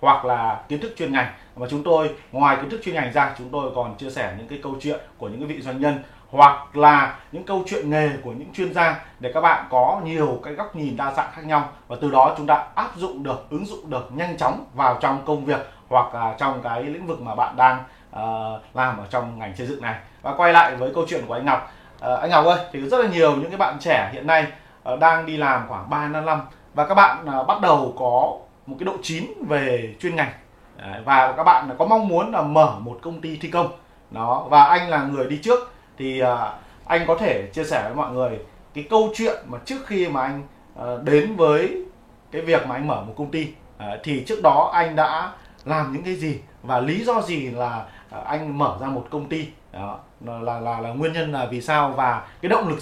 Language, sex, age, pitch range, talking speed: Vietnamese, male, 30-49, 125-160 Hz, 240 wpm